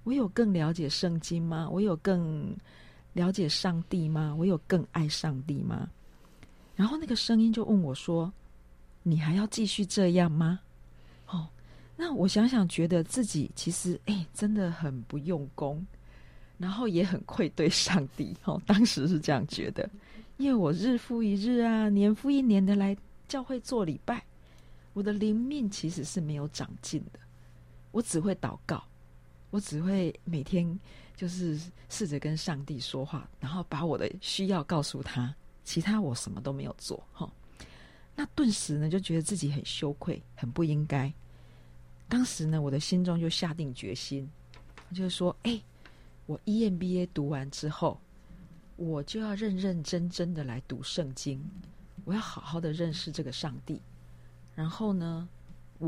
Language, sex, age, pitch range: Chinese, female, 40-59, 140-195 Hz